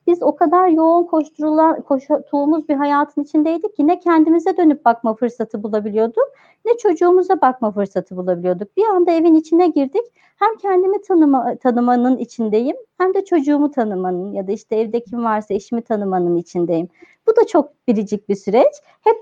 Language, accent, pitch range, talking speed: Turkish, native, 230-340 Hz, 155 wpm